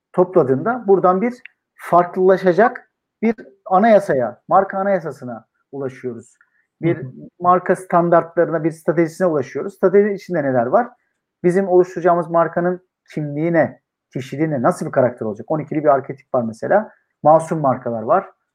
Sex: male